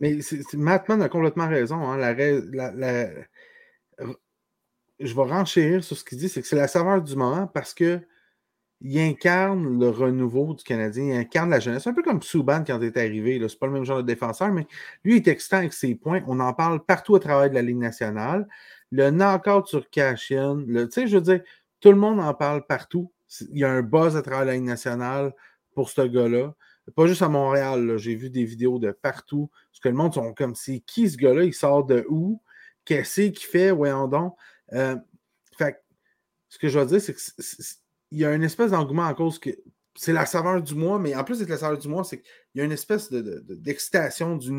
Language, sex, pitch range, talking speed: French, male, 130-175 Hz, 225 wpm